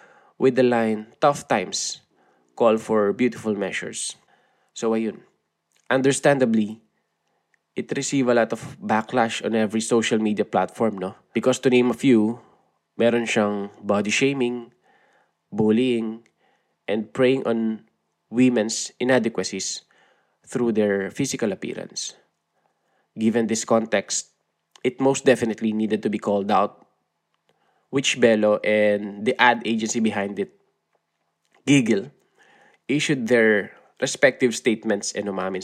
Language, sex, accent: Filipino, male, native